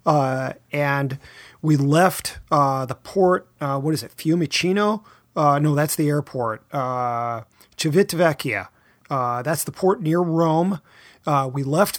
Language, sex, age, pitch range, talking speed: English, male, 30-49, 140-175 Hz, 140 wpm